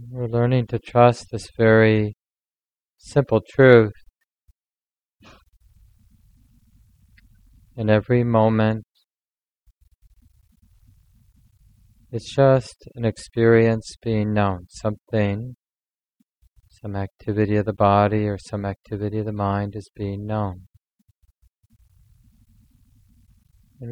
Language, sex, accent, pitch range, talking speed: English, male, American, 100-110 Hz, 85 wpm